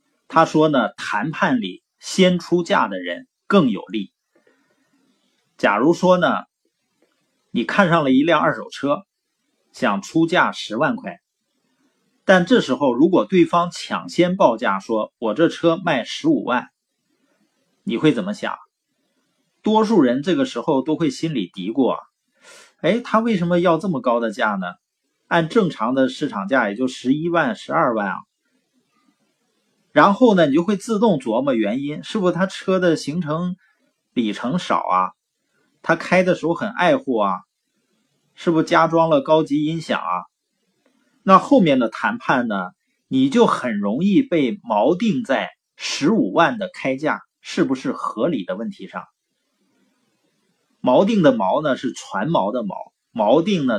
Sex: male